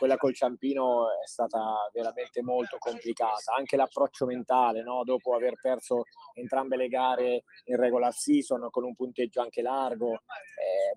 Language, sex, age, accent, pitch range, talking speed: Italian, male, 20-39, native, 125-155 Hz, 150 wpm